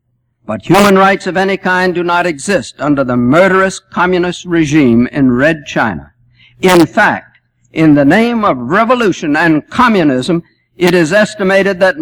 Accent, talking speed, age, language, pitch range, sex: American, 150 wpm, 60-79, English, 125-180 Hz, male